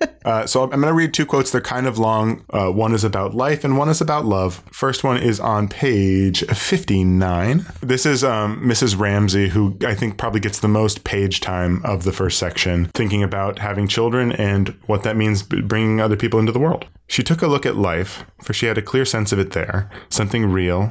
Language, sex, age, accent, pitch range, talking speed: English, male, 20-39, American, 95-120 Hz, 220 wpm